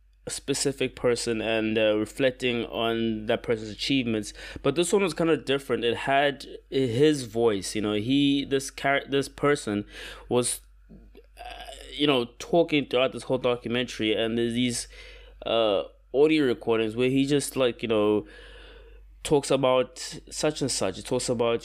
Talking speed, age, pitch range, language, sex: 150 wpm, 20-39, 115-160 Hz, English, male